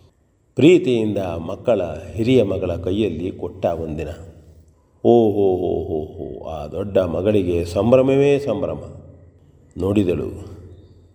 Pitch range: 100-120 Hz